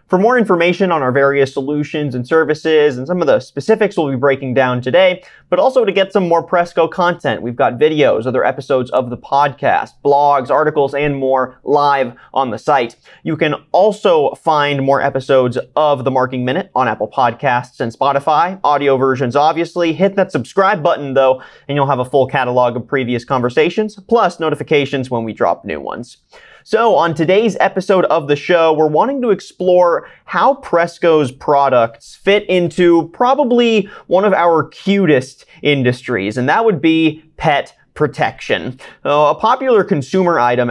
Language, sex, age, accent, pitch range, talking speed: English, male, 30-49, American, 135-180 Hz, 170 wpm